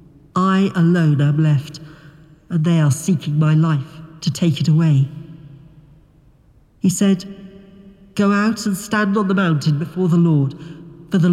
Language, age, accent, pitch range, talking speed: English, 50-69, British, 145-175 Hz, 150 wpm